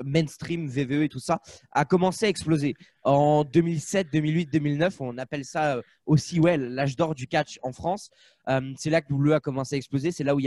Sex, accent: male, French